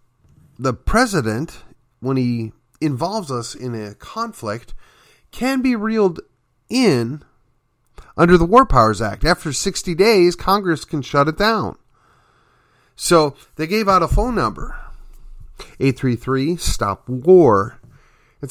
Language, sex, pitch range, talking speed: English, male, 115-190 Hz, 115 wpm